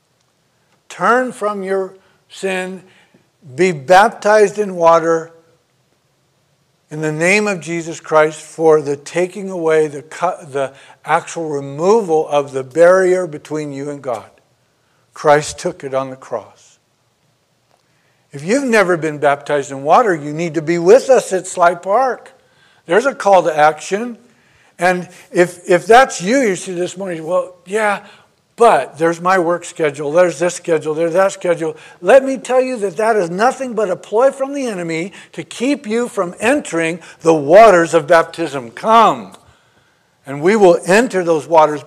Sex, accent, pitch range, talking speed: male, American, 165-210 Hz, 155 wpm